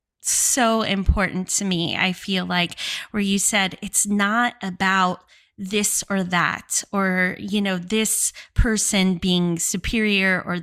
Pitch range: 180-210 Hz